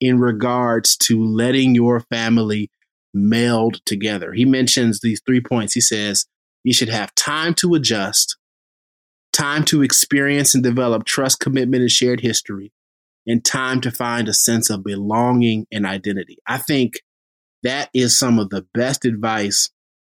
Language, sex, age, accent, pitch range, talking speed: English, male, 30-49, American, 110-130 Hz, 150 wpm